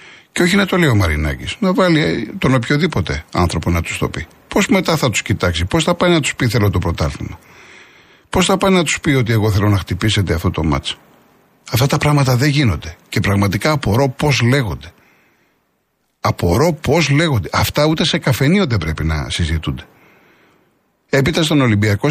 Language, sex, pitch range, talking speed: Greek, male, 95-145 Hz, 185 wpm